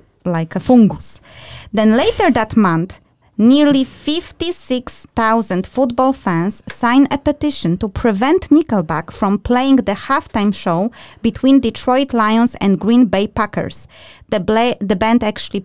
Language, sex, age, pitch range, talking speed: English, female, 20-39, 195-255 Hz, 130 wpm